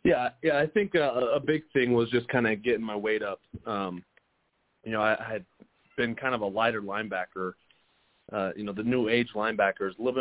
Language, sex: English, male